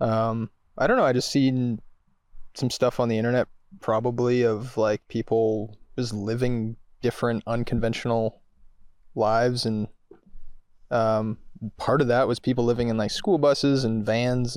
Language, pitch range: English, 110-120 Hz